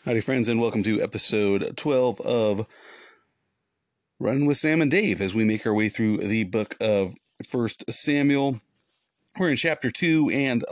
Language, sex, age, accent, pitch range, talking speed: English, male, 40-59, American, 90-115 Hz, 160 wpm